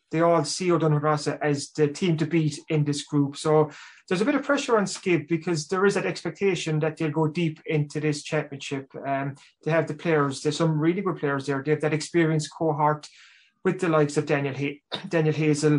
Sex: male